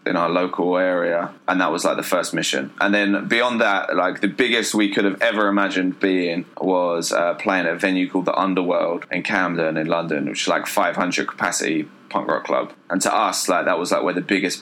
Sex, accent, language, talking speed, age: male, British, English, 225 wpm, 20-39